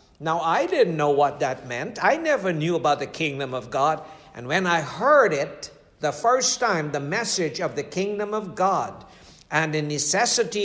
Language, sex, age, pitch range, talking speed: English, male, 60-79, 155-195 Hz, 185 wpm